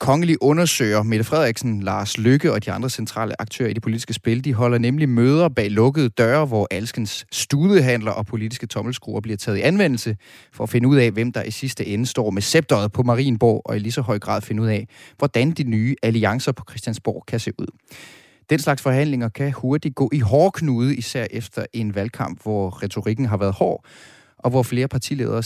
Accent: native